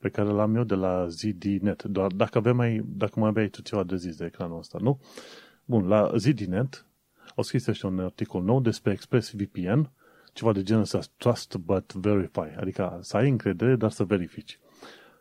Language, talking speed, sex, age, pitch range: Romanian, 185 wpm, male, 30-49, 100-120 Hz